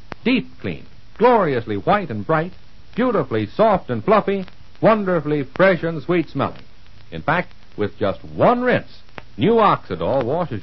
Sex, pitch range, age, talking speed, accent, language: male, 110-170 Hz, 60-79, 135 wpm, American, English